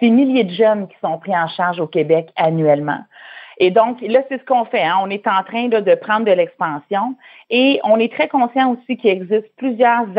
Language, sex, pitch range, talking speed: French, female, 180-230 Hz, 225 wpm